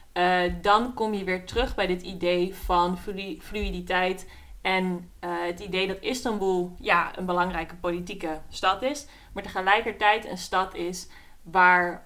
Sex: female